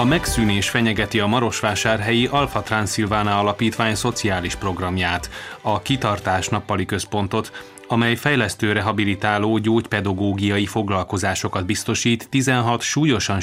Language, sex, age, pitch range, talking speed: Hungarian, male, 30-49, 100-120 Hz, 100 wpm